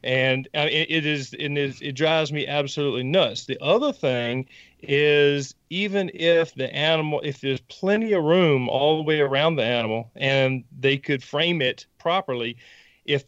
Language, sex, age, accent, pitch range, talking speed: English, male, 40-59, American, 135-165 Hz, 165 wpm